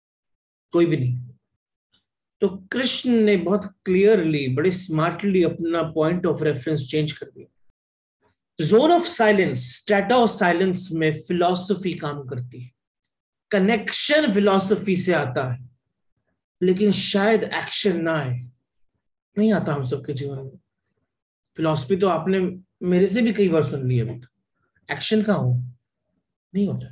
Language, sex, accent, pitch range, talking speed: Hindi, male, native, 140-205 Hz, 125 wpm